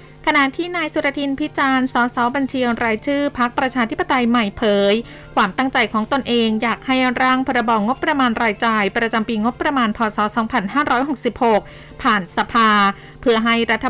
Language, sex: Thai, female